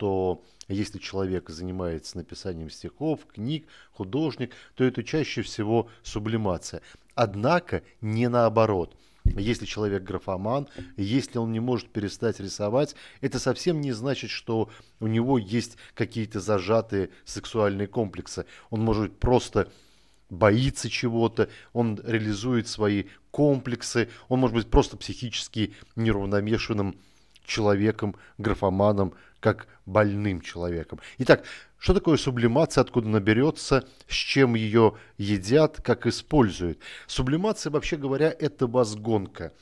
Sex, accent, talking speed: male, native, 115 wpm